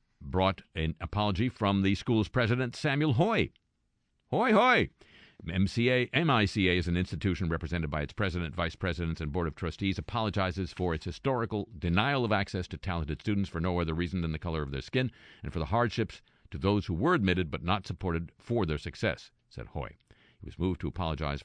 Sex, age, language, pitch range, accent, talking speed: male, 50-69, English, 80-115 Hz, American, 185 wpm